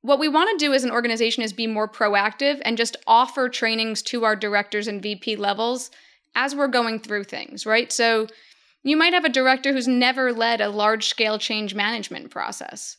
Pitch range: 225-265 Hz